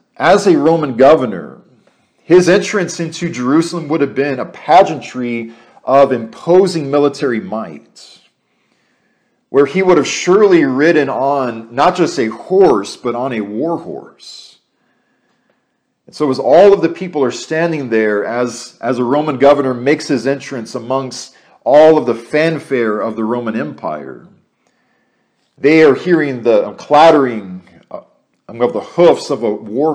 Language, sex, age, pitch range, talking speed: English, male, 40-59, 125-165 Hz, 140 wpm